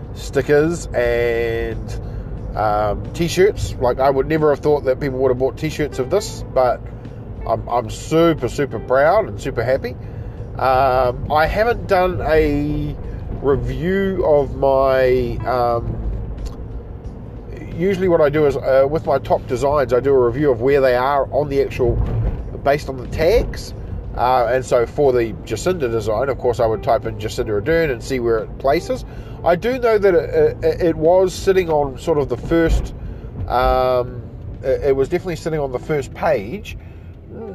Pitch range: 115-150 Hz